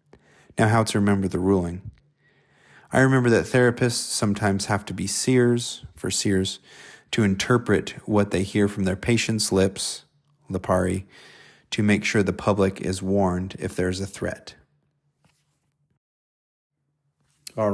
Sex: male